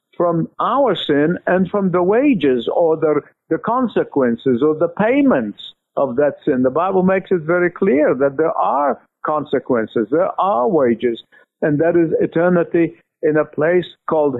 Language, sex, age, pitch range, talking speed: English, male, 50-69, 155-210 Hz, 160 wpm